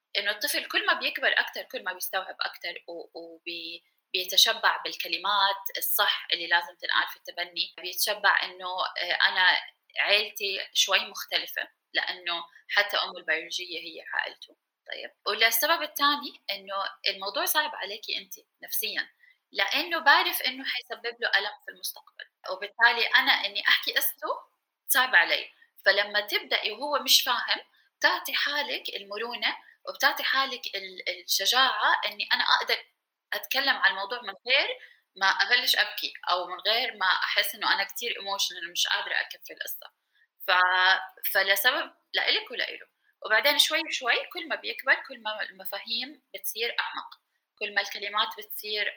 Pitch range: 190-290 Hz